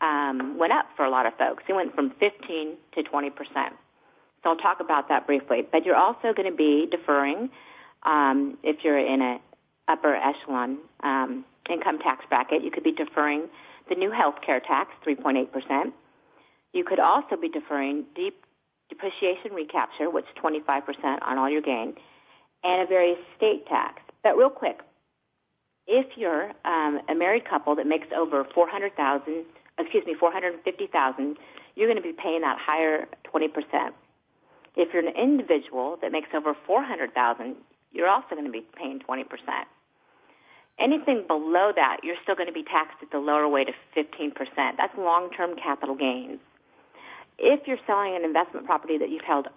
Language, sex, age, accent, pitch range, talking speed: English, female, 50-69, American, 145-185 Hz, 165 wpm